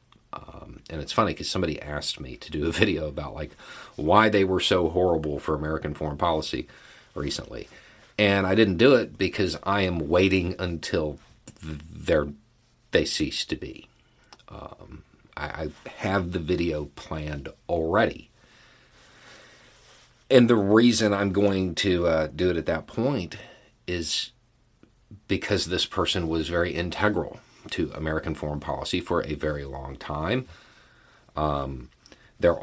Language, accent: English, American